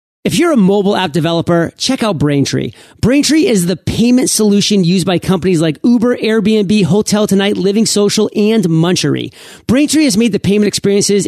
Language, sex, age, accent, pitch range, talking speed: English, male, 40-59, American, 175-220 Hz, 170 wpm